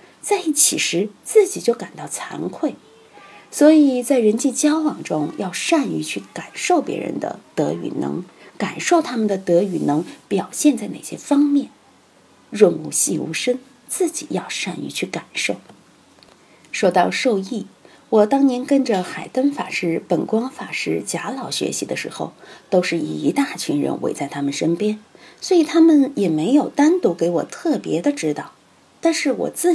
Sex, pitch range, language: female, 185-300 Hz, Chinese